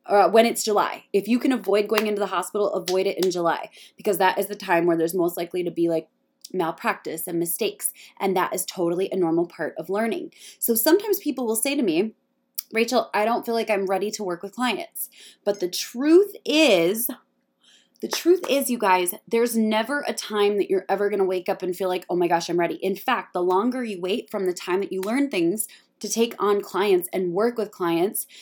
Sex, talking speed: female, 225 wpm